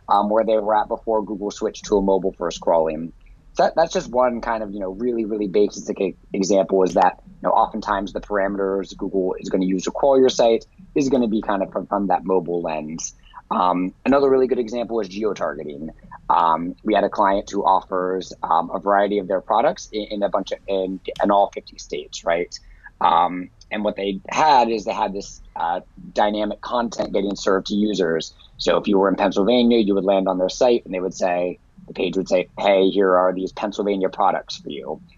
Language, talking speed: English, 215 wpm